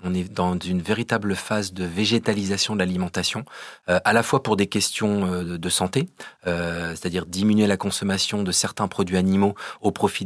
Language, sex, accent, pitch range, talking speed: French, male, French, 90-105 Hz, 180 wpm